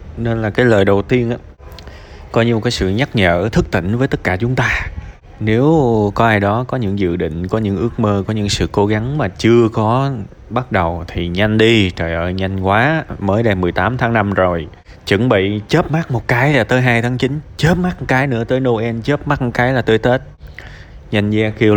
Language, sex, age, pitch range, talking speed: Vietnamese, male, 20-39, 95-125 Hz, 230 wpm